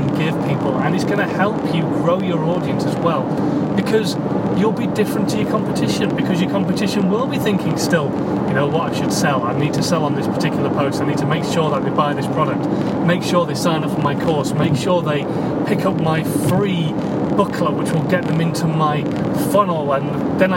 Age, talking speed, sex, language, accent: 30-49, 215 wpm, male, English, British